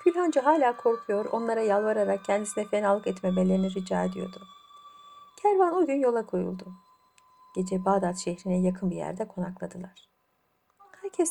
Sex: female